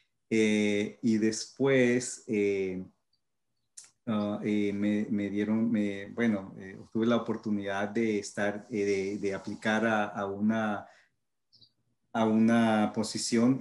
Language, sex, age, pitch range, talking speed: English, male, 40-59, 105-115 Hz, 120 wpm